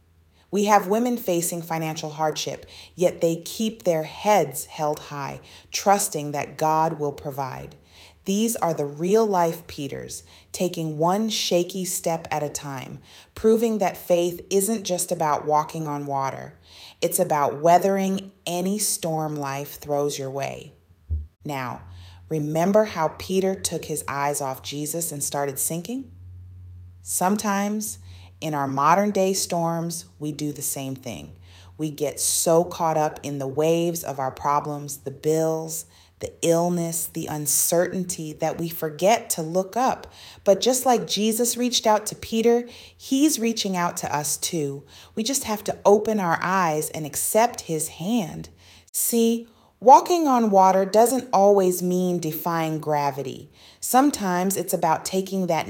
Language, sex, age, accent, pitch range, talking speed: English, female, 30-49, American, 145-195 Hz, 145 wpm